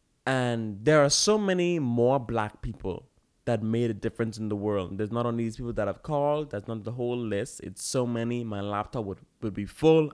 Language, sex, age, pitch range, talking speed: English, male, 20-39, 105-130 Hz, 220 wpm